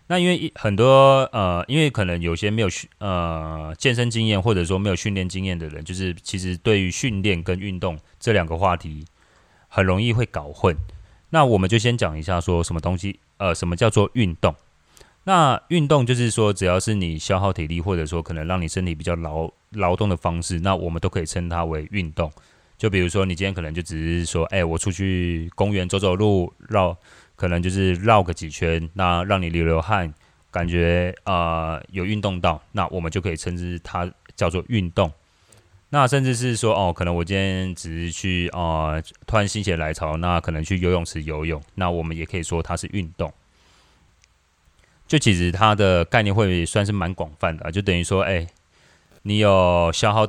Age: 30-49